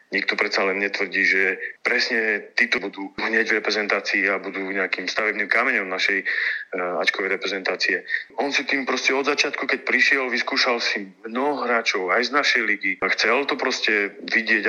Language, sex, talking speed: Slovak, male, 165 wpm